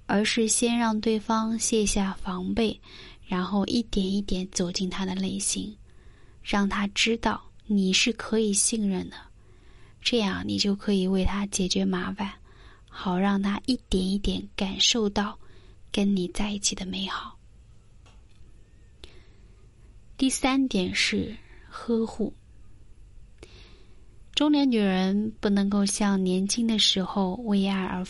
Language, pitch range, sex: Chinese, 185-220 Hz, female